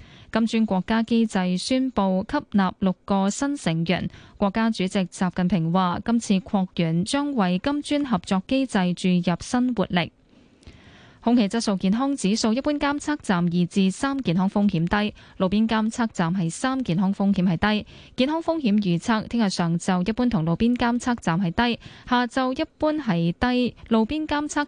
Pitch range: 185-240 Hz